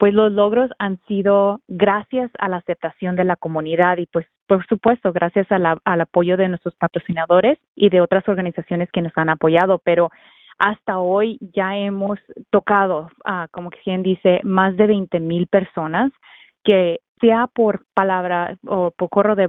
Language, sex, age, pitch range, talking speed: English, female, 30-49, 180-210 Hz, 165 wpm